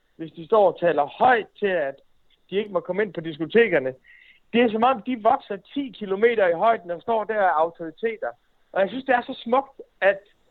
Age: 60-79